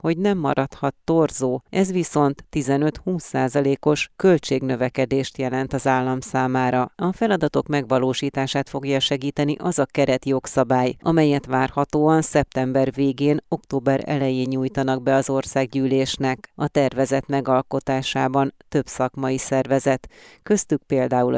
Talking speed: 110 wpm